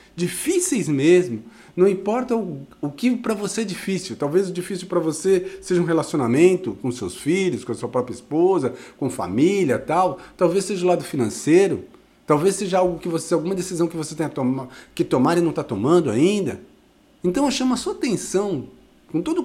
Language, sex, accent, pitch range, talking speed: Portuguese, male, Brazilian, 165-255 Hz, 185 wpm